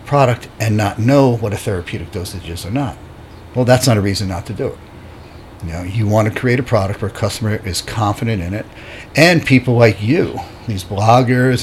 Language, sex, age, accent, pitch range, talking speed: English, male, 50-69, American, 105-125 Hz, 210 wpm